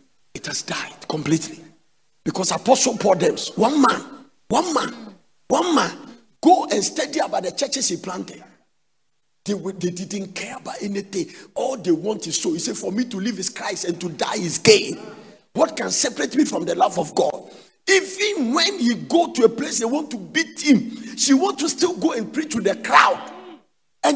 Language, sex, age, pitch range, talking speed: English, male, 50-69, 200-300 Hz, 190 wpm